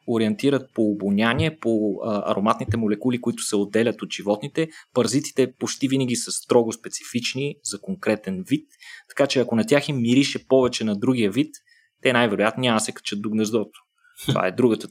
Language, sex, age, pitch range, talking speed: Bulgarian, male, 20-39, 115-150 Hz, 175 wpm